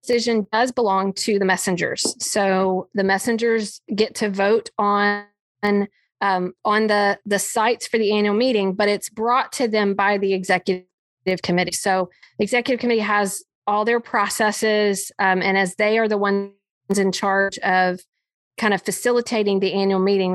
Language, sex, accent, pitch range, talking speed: English, female, American, 190-215 Hz, 160 wpm